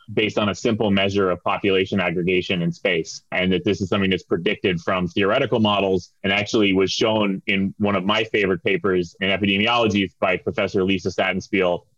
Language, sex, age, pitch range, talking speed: English, male, 20-39, 95-110 Hz, 180 wpm